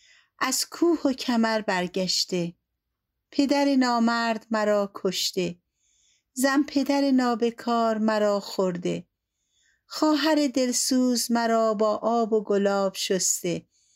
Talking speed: 95 wpm